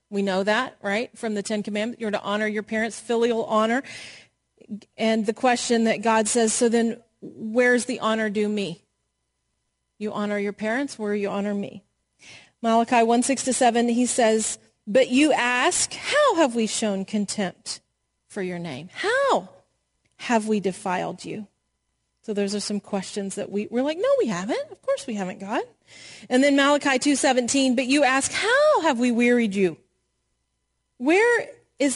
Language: English